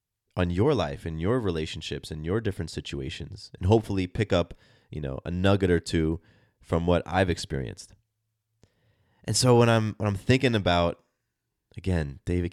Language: English